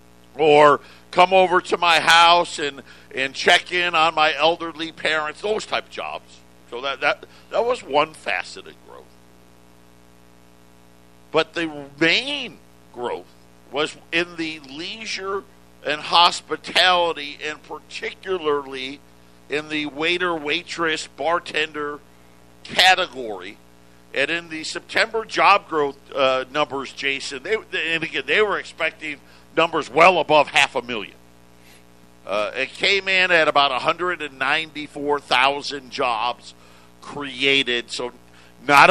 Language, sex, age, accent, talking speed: English, male, 50-69, American, 115 wpm